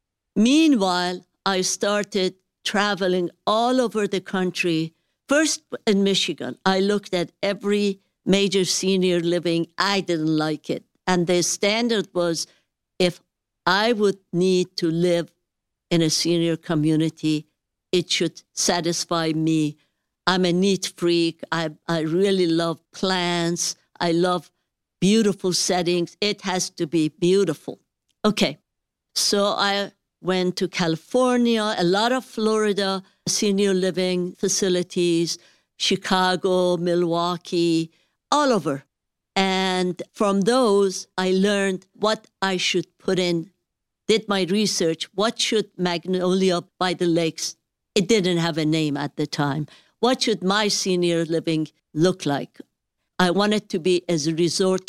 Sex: female